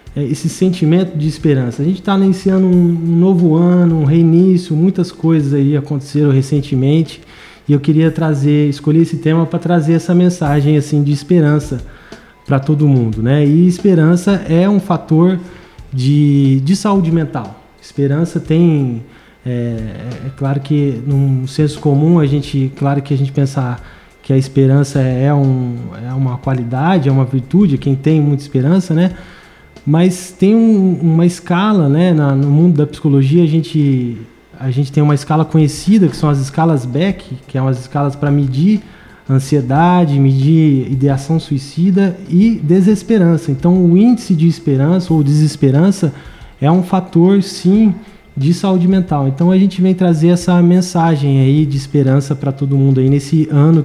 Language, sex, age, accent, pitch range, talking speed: Portuguese, male, 20-39, Brazilian, 140-175 Hz, 160 wpm